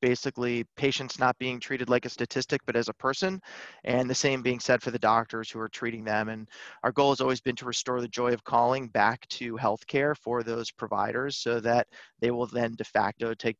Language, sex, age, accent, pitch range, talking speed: English, male, 30-49, American, 115-130 Hz, 220 wpm